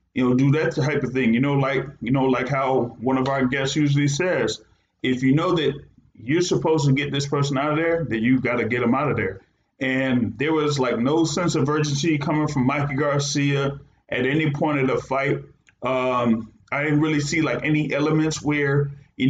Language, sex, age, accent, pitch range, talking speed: English, male, 30-49, American, 130-155 Hz, 220 wpm